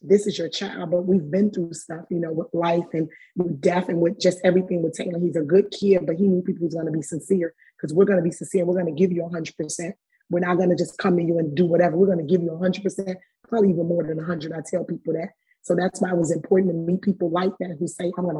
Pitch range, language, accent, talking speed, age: 170-185 Hz, English, American, 305 wpm, 20-39